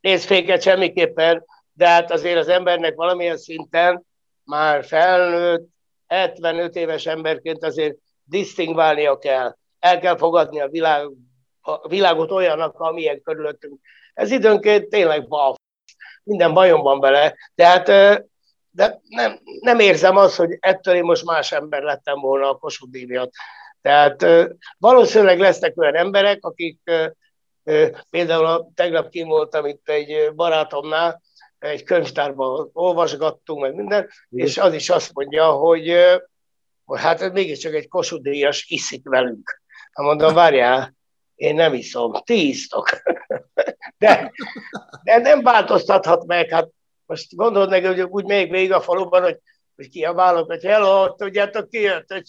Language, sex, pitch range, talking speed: Hungarian, male, 155-195 Hz, 130 wpm